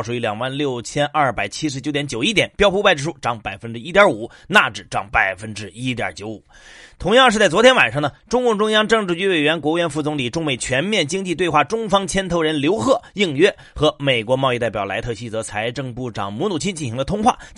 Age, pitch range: 30-49, 140-210 Hz